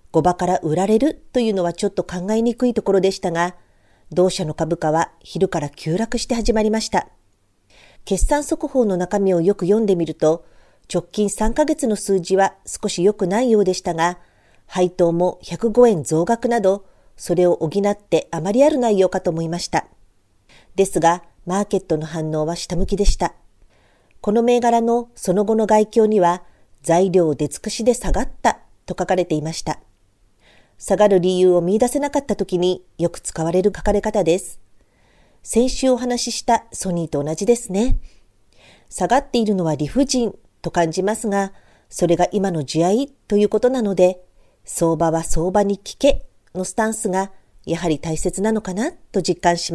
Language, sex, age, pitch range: Japanese, female, 40-59, 170-225 Hz